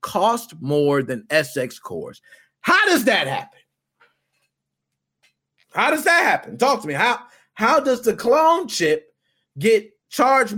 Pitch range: 140-210 Hz